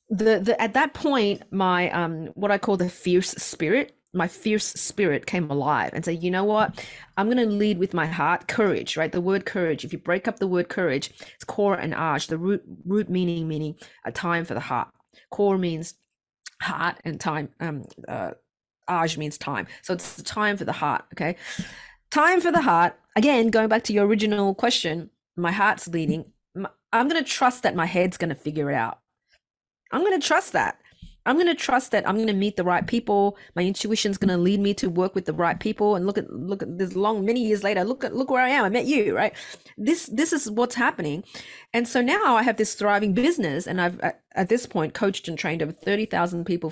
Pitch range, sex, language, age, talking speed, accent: 170-230 Hz, female, English, 30-49, 220 wpm, Australian